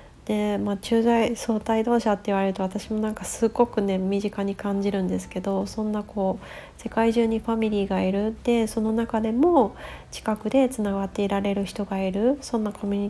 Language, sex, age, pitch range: Japanese, female, 30-49, 185-215 Hz